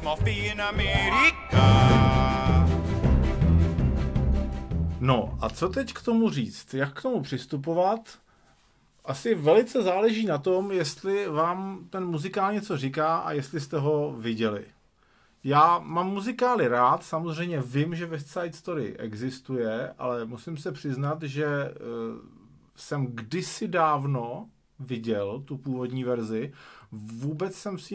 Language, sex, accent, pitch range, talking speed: Czech, male, native, 120-165 Hz, 115 wpm